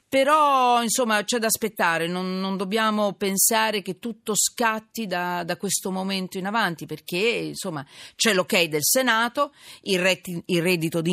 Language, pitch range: Italian, 160-215 Hz